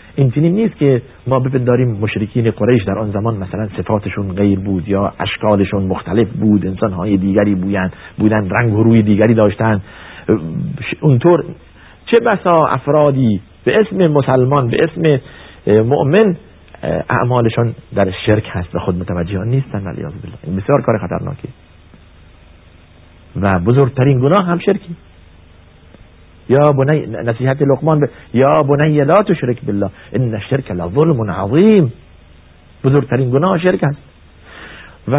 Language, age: Persian, 50-69